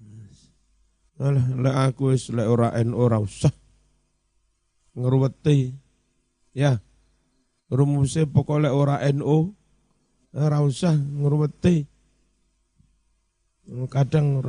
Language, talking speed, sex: Indonesian, 80 wpm, male